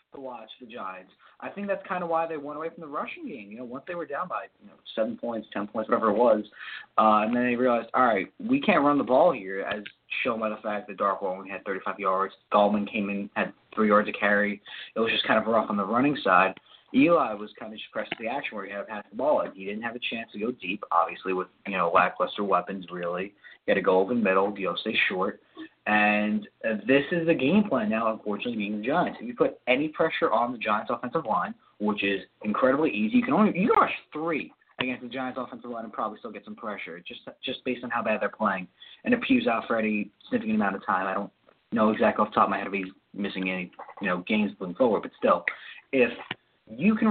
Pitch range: 100-165 Hz